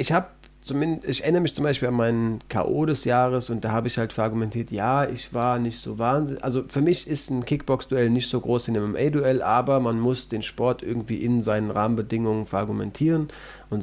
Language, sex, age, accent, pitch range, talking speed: German, male, 30-49, German, 115-135 Hz, 210 wpm